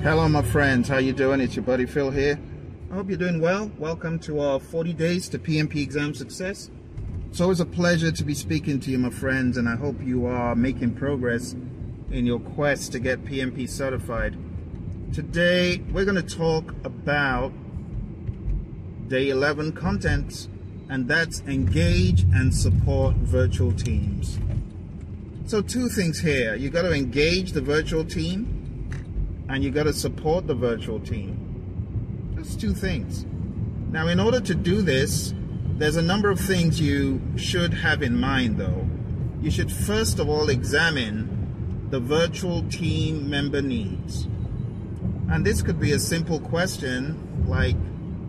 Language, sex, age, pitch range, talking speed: English, male, 30-49, 105-155 Hz, 150 wpm